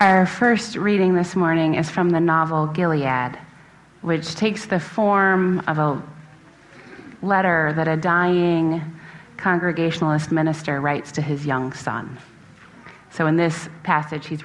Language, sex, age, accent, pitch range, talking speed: English, female, 30-49, American, 155-220 Hz, 135 wpm